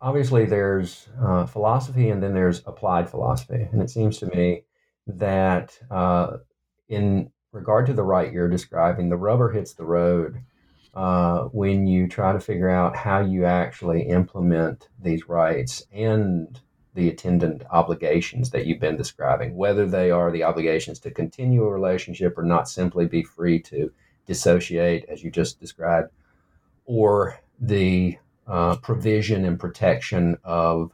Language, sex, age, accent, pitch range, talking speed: English, male, 50-69, American, 85-115 Hz, 145 wpm